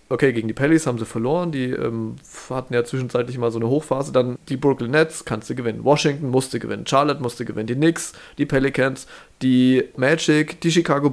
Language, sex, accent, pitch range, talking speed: German, male, German, 125-155 Hz, 200 wpm